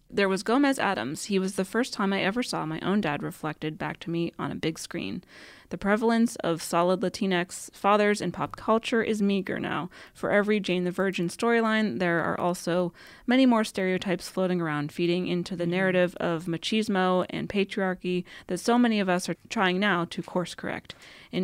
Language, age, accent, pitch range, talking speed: English, 20-39, American, 175-210 Hz, 195 wpm